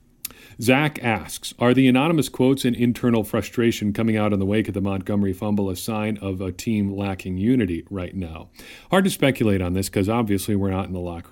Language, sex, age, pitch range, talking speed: English, male, 40-59, 100-120 Hz, 205 wpm